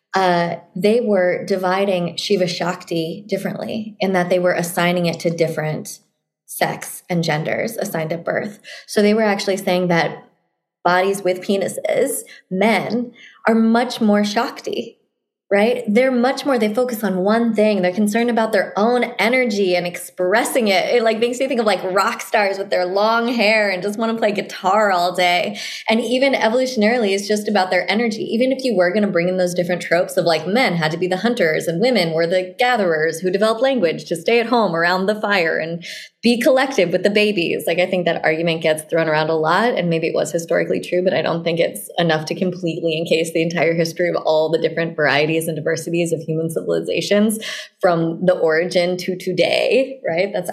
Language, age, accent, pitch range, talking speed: English, 20-39, American, 170-220 Hz, 200 wpm